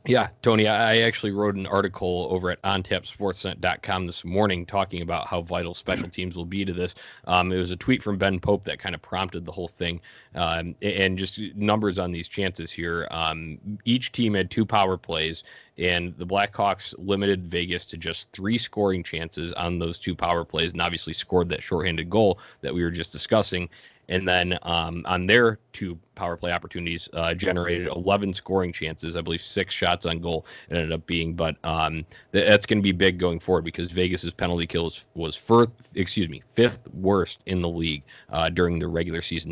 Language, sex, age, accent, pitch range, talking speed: English, male, 20-39, American, 85-100 Hz, 195 wpm